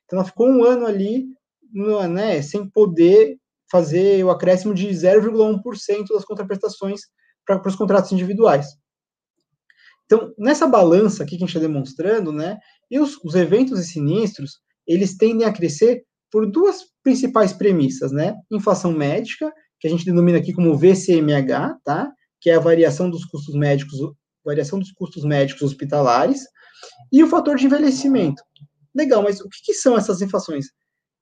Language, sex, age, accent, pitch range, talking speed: Portuguese, male, 20-39, Brazilian, 160-225 Hz, 155 wpm